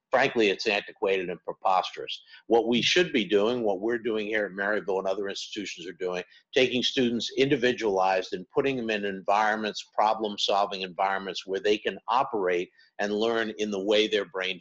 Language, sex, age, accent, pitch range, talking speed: English, male, 50-69, American, 105-130 Hz, 175 wpm